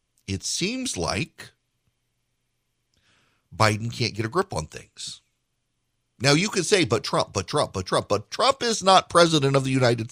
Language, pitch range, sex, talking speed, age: English, 115-145 Hz, male, 165 wpm, 50-69